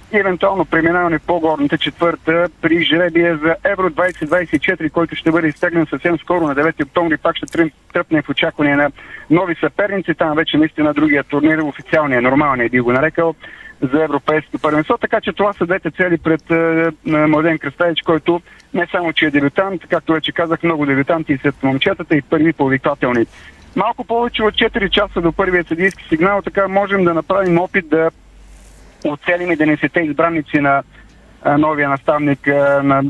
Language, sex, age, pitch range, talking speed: Bulgarian, male, 40-59, 150-175 Hz, 165 wpm